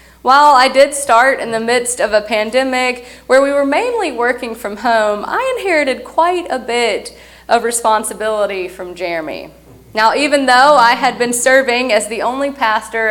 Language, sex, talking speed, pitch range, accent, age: English, female, 170 wpm, 220-280 Hz, American, 30-49